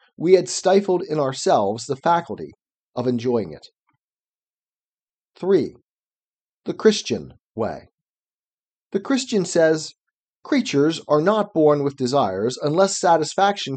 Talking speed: 110 wpm